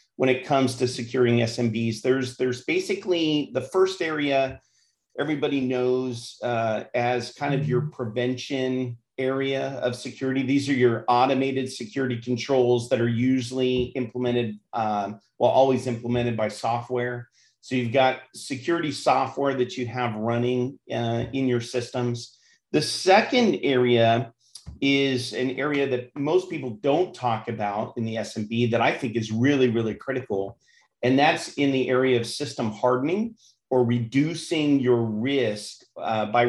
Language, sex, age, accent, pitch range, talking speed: English, male, 40-59, American, 120-135 Hz, 145 wpm